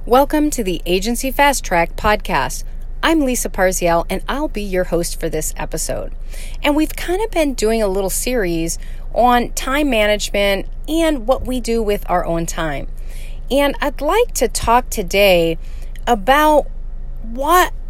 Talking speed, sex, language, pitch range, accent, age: 155 wpm, female, English, 190-275 Hz, American, 30-49